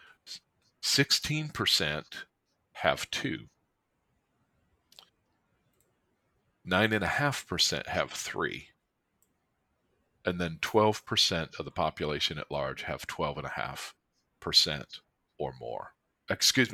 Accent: American